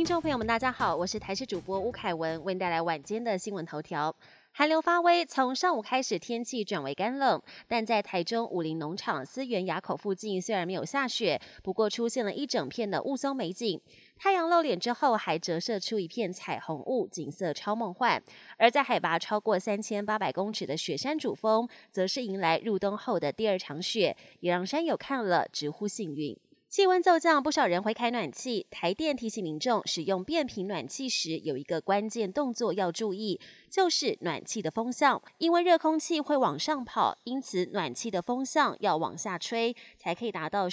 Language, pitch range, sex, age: Chinese, 185-265 Hz, female, 20-39